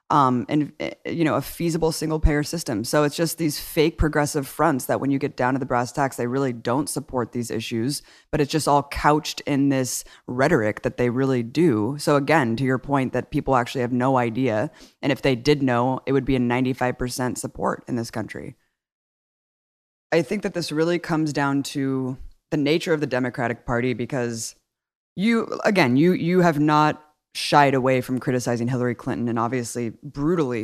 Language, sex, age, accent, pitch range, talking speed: English, female, 20-39, American, 125-150 Hz, 195 wpm